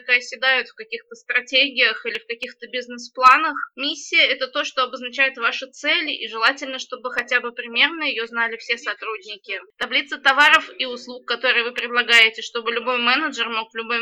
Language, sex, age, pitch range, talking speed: Russian, female, 20-39, 230-270 Hz, 165 wpm